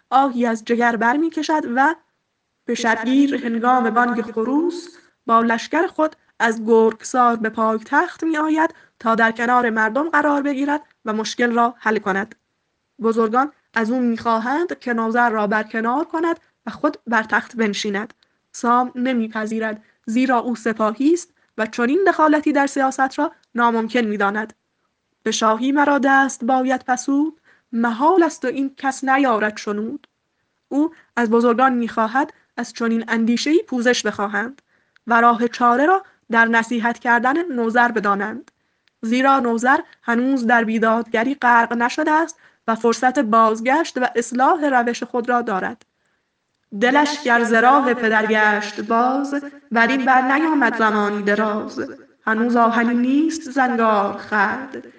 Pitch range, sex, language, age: 225-280 Hz, female, Persian, 10-29